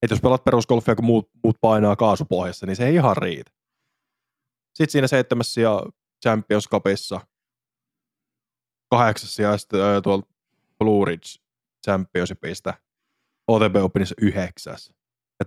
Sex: male